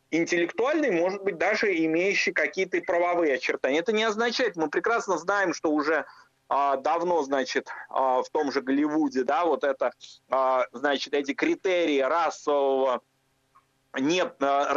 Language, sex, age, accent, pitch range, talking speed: Russian, male, 30-49, native, 140-185 Hz, 140 wpm